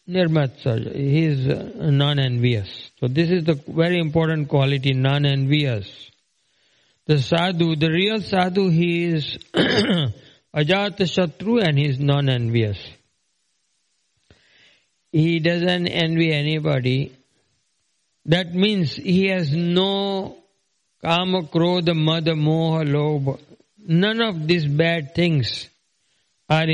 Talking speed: 100 wpm